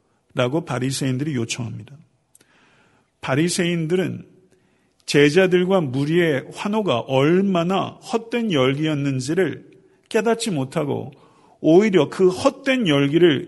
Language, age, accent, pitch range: Korean, 50-69, native, 135-180 Hz